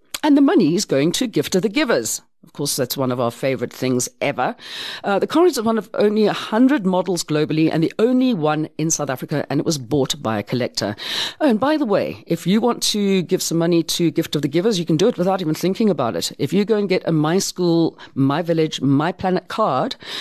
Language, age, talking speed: English, 50-69, 240 wpm